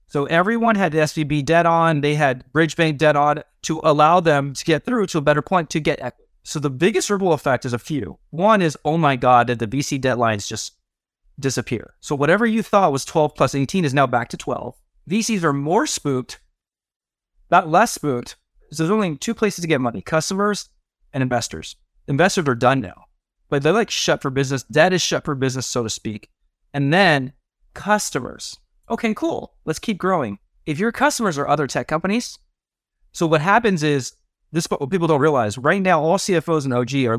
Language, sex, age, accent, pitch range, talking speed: English, male, 30-49, American, 130-175 Hz, 205 wpm